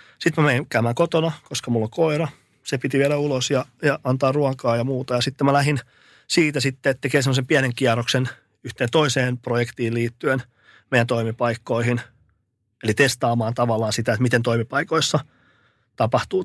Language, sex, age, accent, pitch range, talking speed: Finnish, male, 30-49, native, 120-145 Hz, 160 wpm